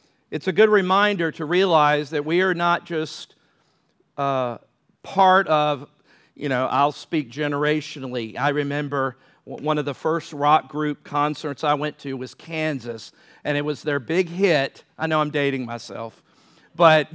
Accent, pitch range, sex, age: American, 150-235 Hz, male, 50-69